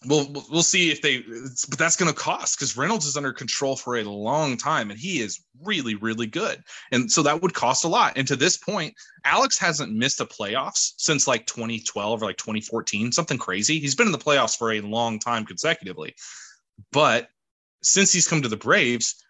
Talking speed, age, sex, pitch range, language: 210 wpm, 20-39, male, 115-145 Hz, English